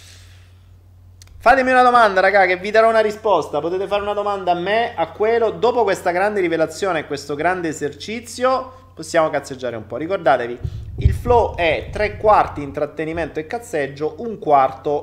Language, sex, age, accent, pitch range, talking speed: Italian, male, 30-49, native, 110-180 Hz, 160 wpm